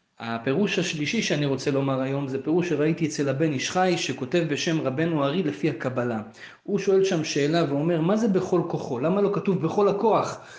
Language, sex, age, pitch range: Hebrew, male, 30-49, 150-190 Hz